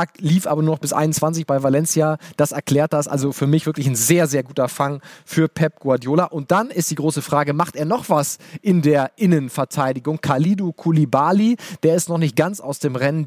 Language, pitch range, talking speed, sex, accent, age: German, 135-165 Hz, 210 wpm, male, German, 30-49